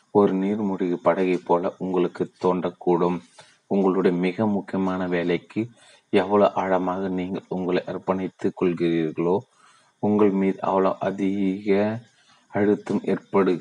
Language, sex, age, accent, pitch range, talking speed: Tamil, male, 30-49, native, 90-95 Hz, 95 wpm